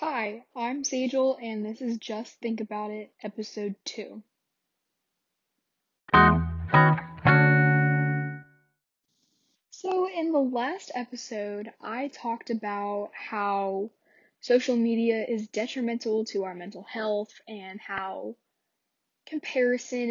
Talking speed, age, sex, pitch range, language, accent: 95 wpm, 10-29, female, 200-240 Hz, English, American